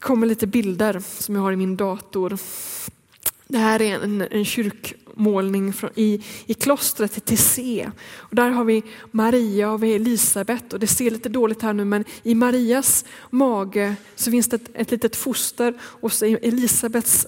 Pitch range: 205-240 Hz